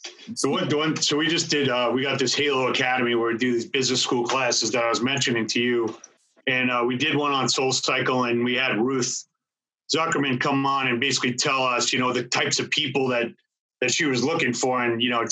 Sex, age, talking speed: male, 30-49, 240 wpm